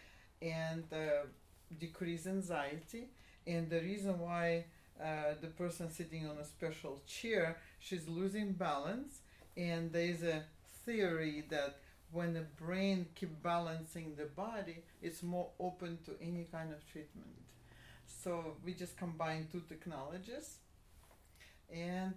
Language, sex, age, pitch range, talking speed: English, female, 40-59, 155-185 Hz, 125 wpm